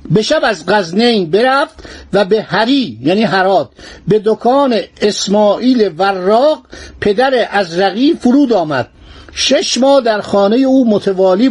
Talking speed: 130 wpm